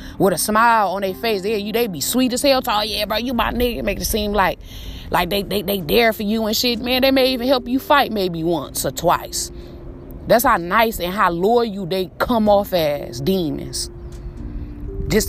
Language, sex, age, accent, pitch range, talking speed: English, female, 20-39, American, 175-240 Hz, 225 wpm